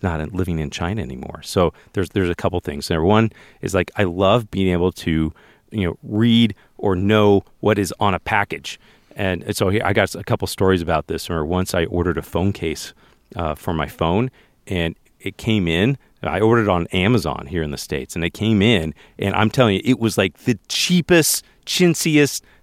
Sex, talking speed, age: male, 205 wpm, 40-59